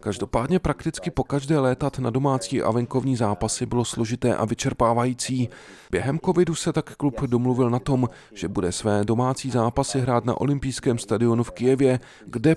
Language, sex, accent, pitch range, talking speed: Czech, male, native, 115-135 Hz, 160 wpm